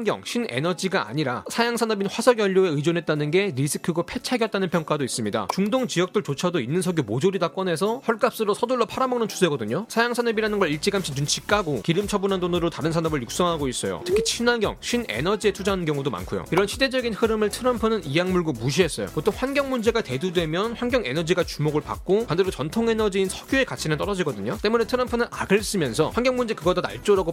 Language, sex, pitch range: Korean, male, 165-230 Hz